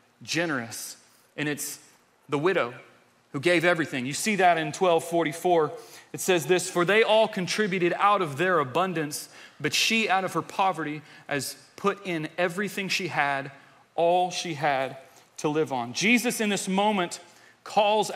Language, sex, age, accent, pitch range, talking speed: English, male, 30-49, American, 155-200 Hz, 155 wpm